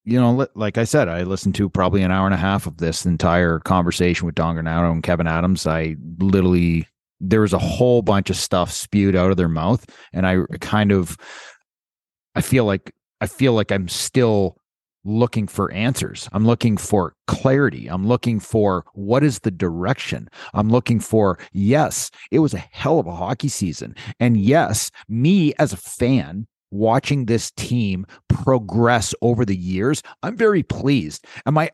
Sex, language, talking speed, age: male, English, 180 wpm, 30-49